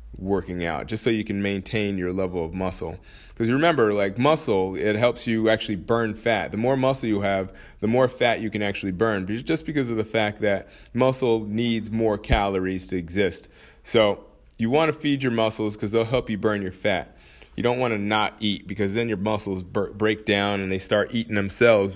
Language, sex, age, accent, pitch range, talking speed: English, male, 20-39, American, 95-115 Hz, 210 wpm